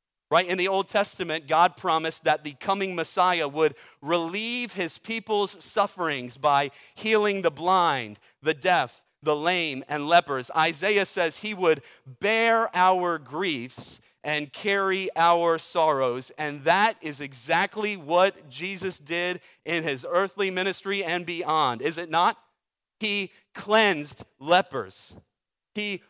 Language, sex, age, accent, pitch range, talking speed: English, male, 40-59, American, 165-205 Hz, 130 wpm